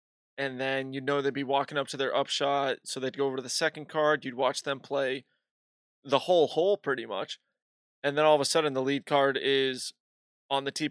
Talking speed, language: 230 wpm, English